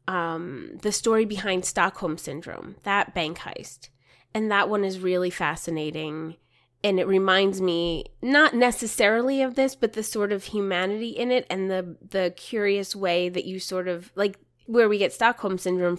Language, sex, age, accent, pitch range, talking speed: English, female, 20-39, American, 180-215 Hz, 170 wpm